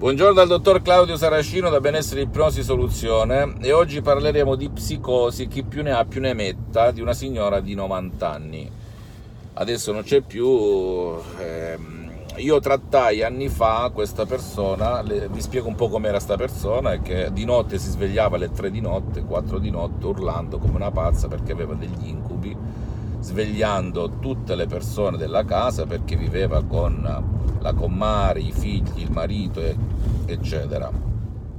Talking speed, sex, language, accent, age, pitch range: 160 wpm, male, Italian, native, 50-69, 95-115 Hz